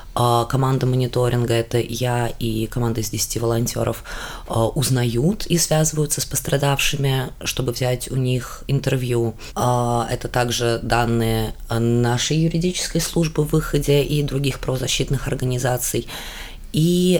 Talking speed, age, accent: 110 wpm, 20-39, native